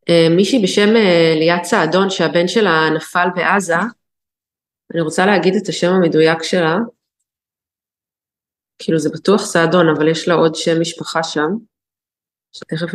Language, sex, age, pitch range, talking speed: Hebrew, female, 30-49, 165-205 Hz, 135 wpm